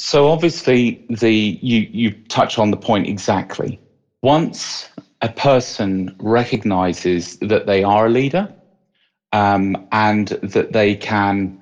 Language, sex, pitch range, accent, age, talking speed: English, male, 105-130 Hz, British, 40-59, 125 wpm